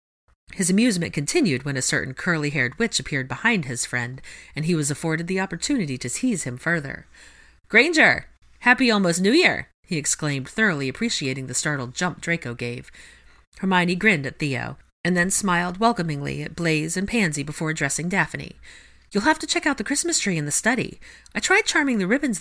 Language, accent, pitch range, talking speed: English, American, 140-210 Hz, 180 wpm